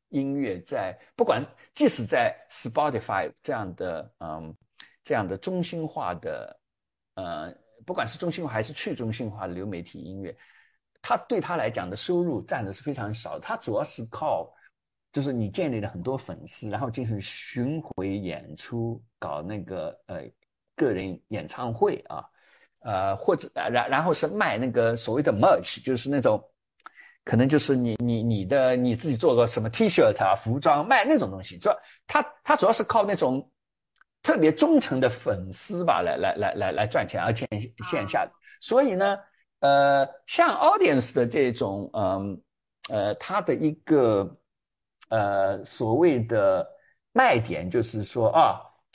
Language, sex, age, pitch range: Chinese, male, 50-69, 105-155 Hz